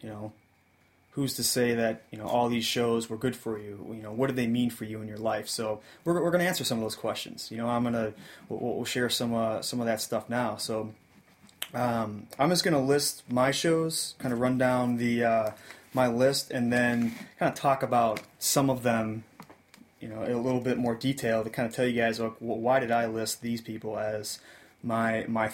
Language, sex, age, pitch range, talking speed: English, male, 20-39, 110-130 Hz, 240 wpm